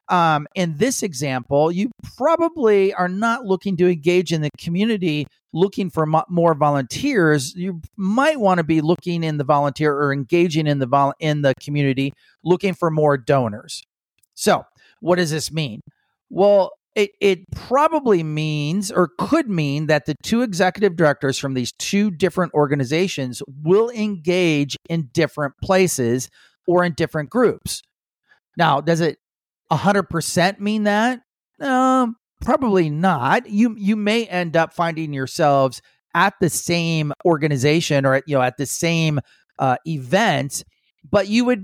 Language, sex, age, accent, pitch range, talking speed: English, male, 50-69, American, 145-195 Hz, 155 wpm